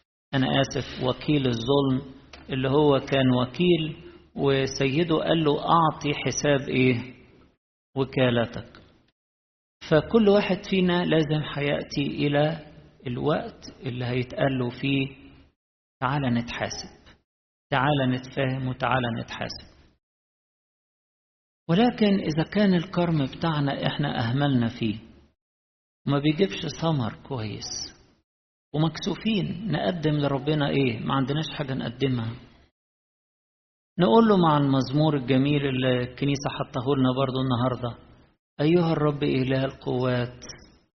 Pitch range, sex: 125-155 Hz, male